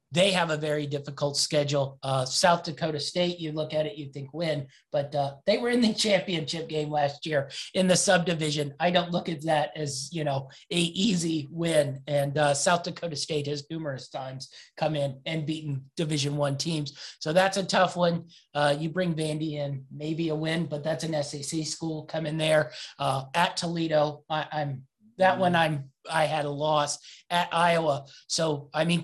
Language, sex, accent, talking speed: English, male, American, 195 wpm